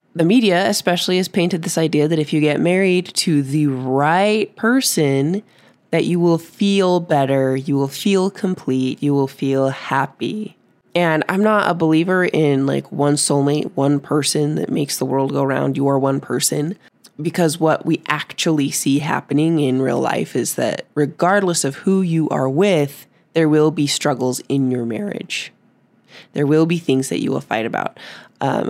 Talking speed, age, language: 175 wpm, 20-39, English